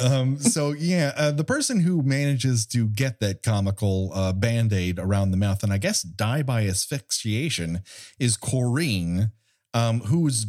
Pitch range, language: 100-130 Hz, English